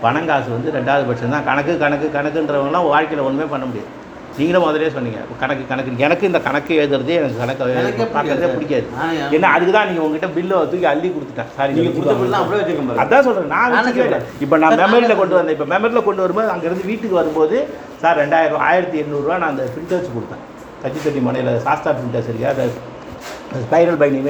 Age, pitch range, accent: 50-69, 145-180 Hz, native